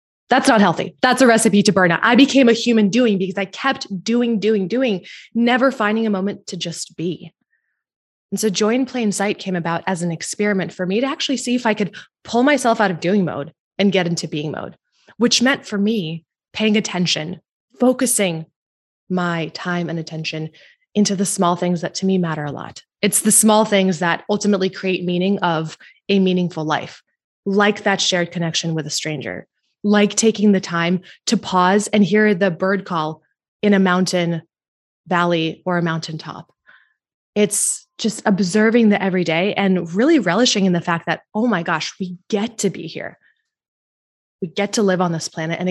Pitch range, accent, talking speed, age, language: 175-215 Hz, American, 185 wpm, 20-39, English